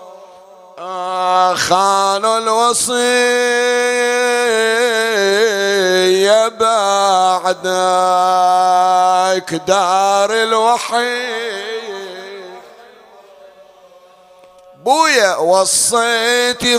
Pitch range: 185-240 Hz